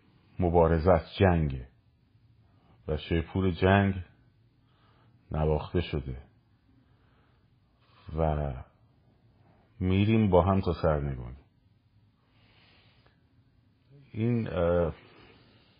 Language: Persian